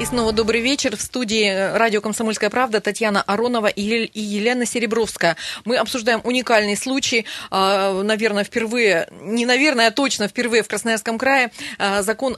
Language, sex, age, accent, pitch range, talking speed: Russian, female, 30-49, native, 210-250 Hz, 135 wpm